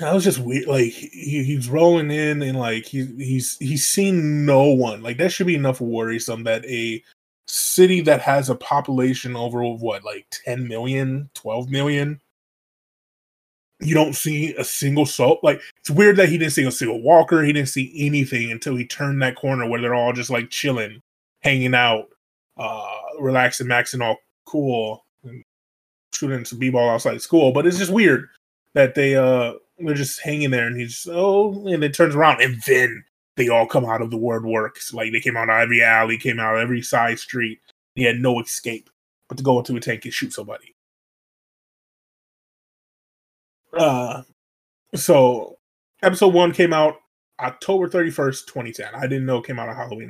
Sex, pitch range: male, 120-150 Hz